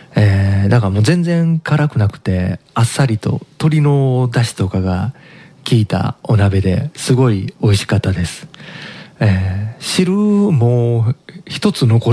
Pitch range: 100-145 Hz